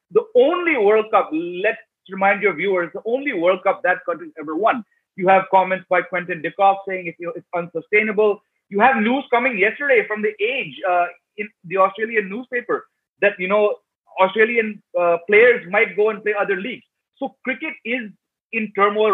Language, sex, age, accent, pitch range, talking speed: English, male, 30-49, Indian, 195-245 Hz, 175 wpm